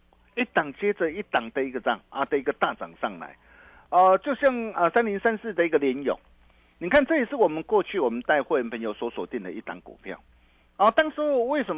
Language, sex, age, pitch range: Chinese, male, 50-69, 140-230 Hz